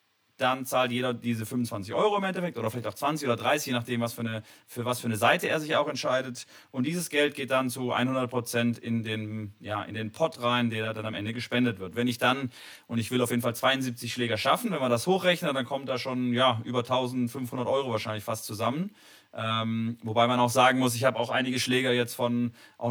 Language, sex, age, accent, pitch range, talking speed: German, male, 30-49, German, 120-150 Hz, 225 wpm